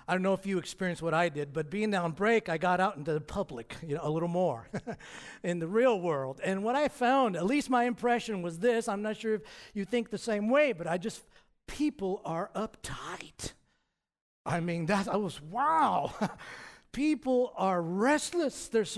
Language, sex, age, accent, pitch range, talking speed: English, male, 50-69, American, 170-245 Hz, 200 wpm